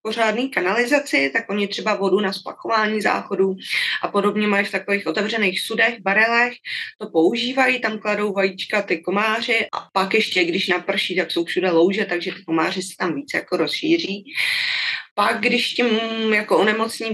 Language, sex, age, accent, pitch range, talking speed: Czech, female, 20-39, native, 180-220 Hz, 160 wpm